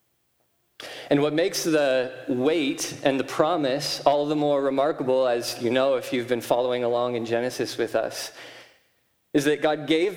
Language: English